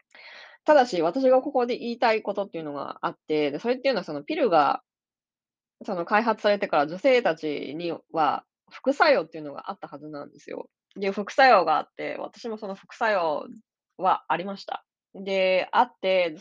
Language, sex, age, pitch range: Japanese, female, 20-39, 155-240 Hz